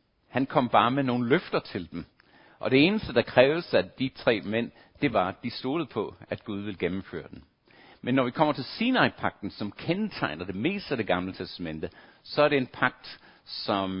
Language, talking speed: Danish, 205 wpm